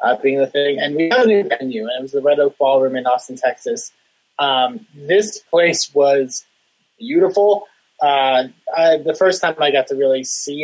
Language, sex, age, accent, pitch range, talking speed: English, male, 20-39, American, 130-215 Hz, 195 wpm